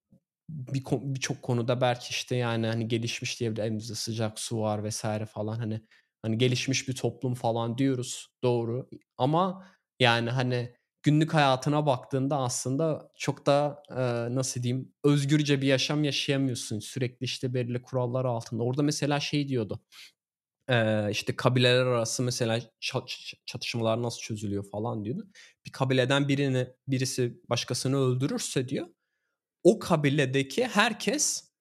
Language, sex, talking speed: Turkish, male, 125 wpm